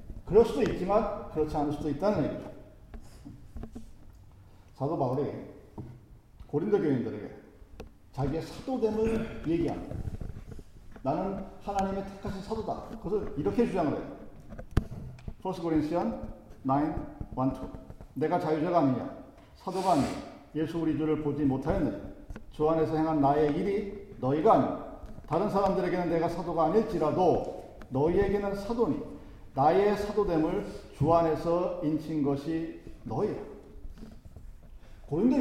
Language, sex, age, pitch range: Korean, male, 50-69, 155-230 Hz